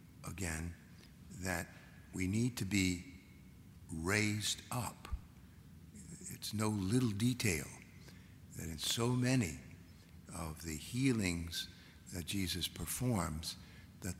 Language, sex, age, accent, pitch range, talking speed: English, male, 60-79, American, 85-105 Hz, 95 wpm